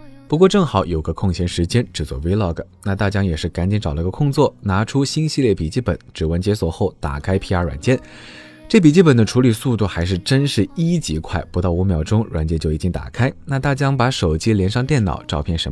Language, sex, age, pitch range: Chinese, male, 20-39, 80-125 Hz